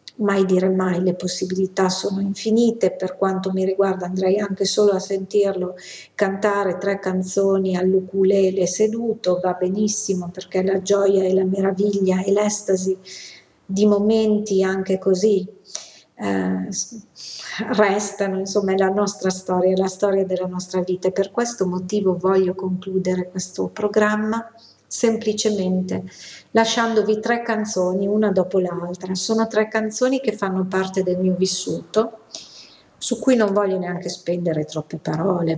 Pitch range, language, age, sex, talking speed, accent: 180-205 Hz, Italian, 50-69, female, 135 wpm, native